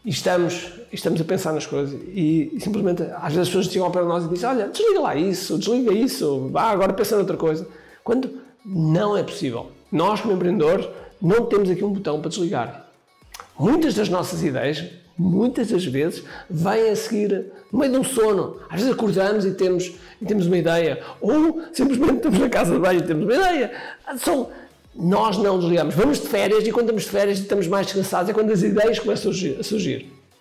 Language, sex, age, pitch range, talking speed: Portuguese, male, 50-69, 170-215 Hz, 205 wpm